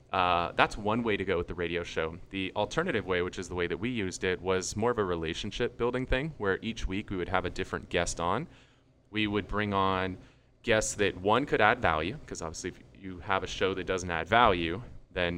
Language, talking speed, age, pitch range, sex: English, 230 wpm, 20-39, 85-120 Hz, male